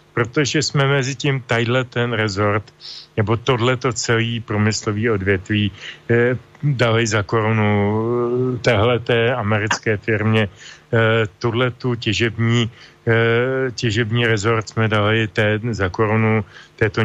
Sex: male